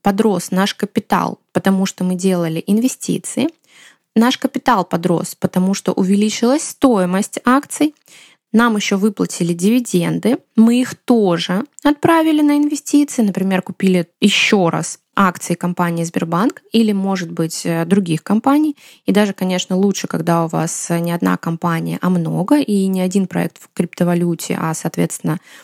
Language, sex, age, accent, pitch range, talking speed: Russian, female, 20-39, native, 185-225 Hz, 135 wpm